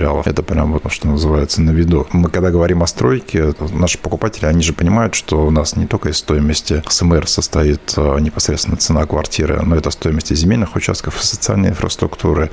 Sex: male